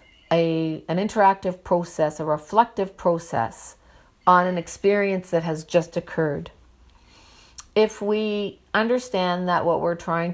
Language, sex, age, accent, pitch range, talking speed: English, female, 50-69, American, 165-195 Hz, 120 wpm